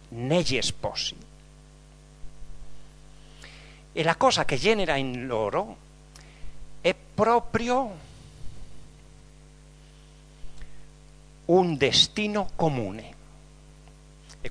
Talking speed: 60 wpm